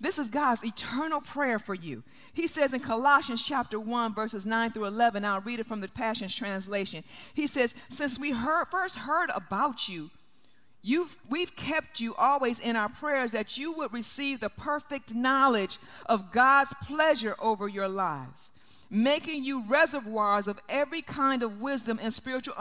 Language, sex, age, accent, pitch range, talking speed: English, female, 40-59, American, 230-305 Hz, 170 wpm